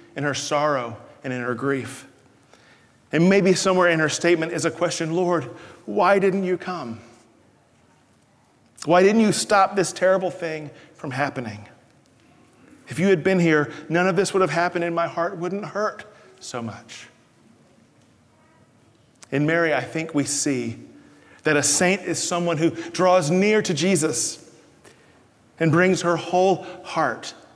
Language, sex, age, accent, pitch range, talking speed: English, male, 40-59, American, 135-180 Hz, 150 wpm